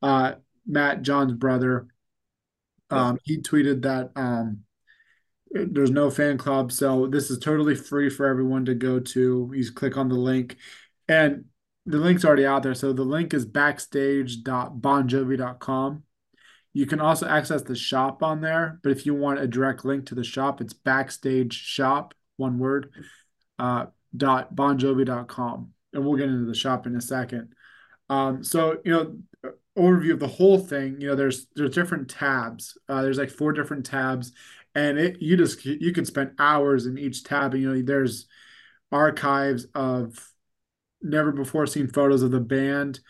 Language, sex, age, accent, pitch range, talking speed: English, male, 20-39, American, 130-145 Hz, 165 wpm